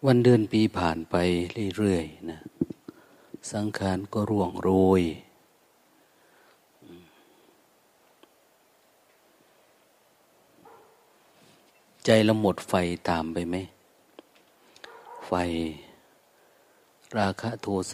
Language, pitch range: Thai, 90-110 Hz